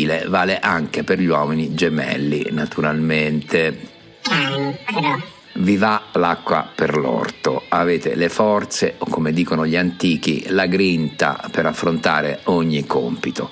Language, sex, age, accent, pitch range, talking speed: Italian, male, 50-69, native, 75-90 Hz, 115 wpm